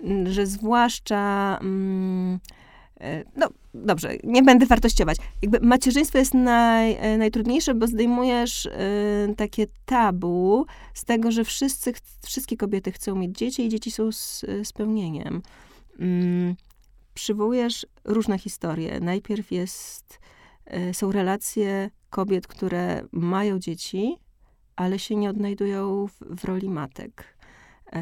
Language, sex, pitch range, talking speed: Polish, female, 185-220 Hz, 105 wpm